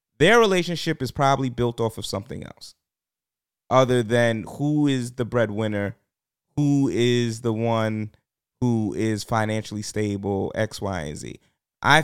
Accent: American